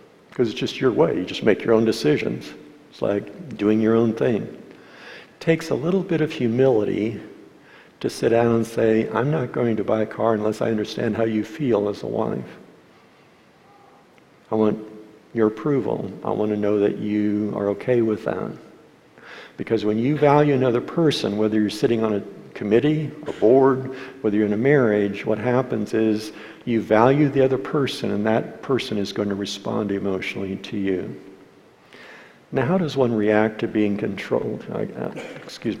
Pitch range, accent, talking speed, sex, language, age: 105-125 Hz, American, 175 wpm, male, English, 60-79